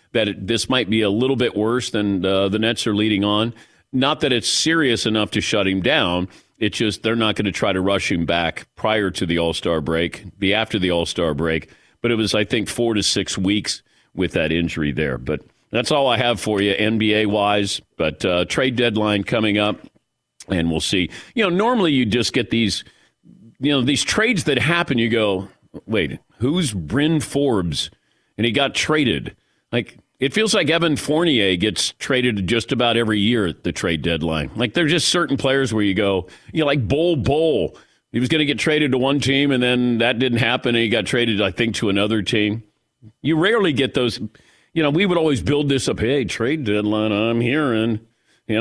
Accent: American